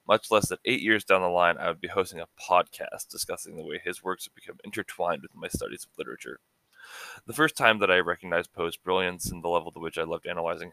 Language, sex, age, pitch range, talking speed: English, male, 20-39, 90-100 Hz, 240 wpm